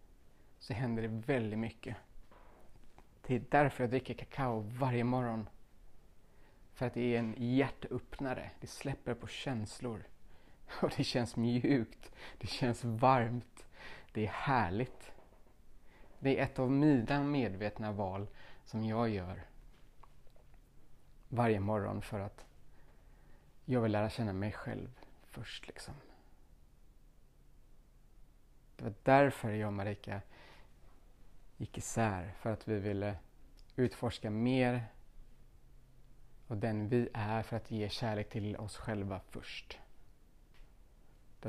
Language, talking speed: Swedish, 120 wpm